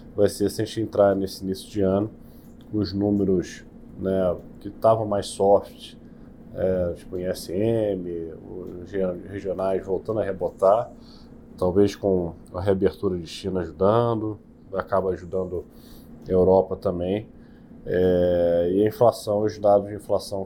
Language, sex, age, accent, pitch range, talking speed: Portuguese, male, 20-39, Brazilian, 90-100 Hz, 135 wpm